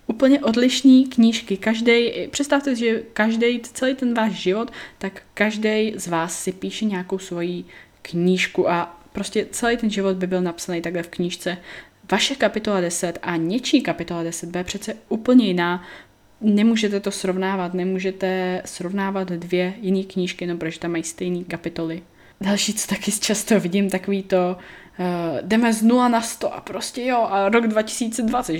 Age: 20-39